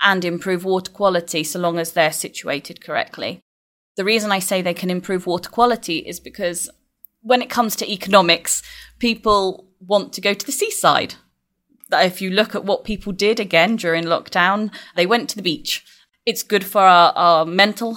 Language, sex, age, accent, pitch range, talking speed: English, female, 20-39, British, 170-205 Hz, 180 wpm